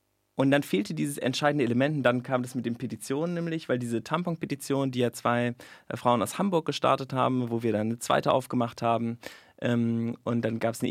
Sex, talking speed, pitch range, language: male, 205 wpm, 120-135 Hz, German